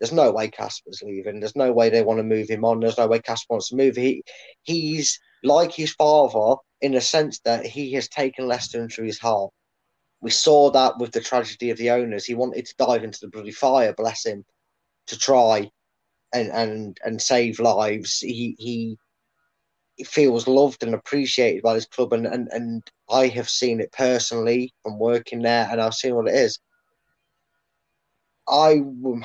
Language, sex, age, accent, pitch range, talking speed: English, male, 20-39, British, 115-140 Hz, 185 wpm